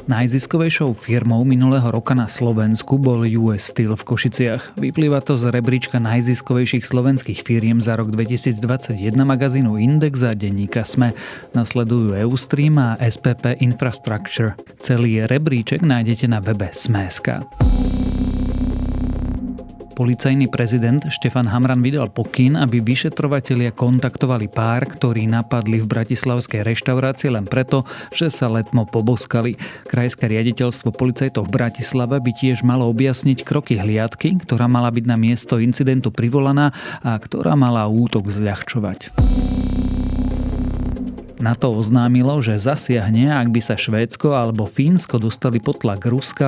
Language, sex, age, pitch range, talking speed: Slovak, male, 30-49, 110-130 Hz, 120 wpm